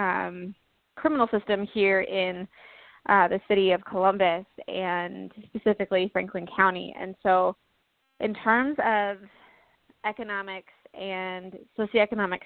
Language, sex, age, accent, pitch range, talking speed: English, female, 20-39, American, 185-220 Hz, 105 wpm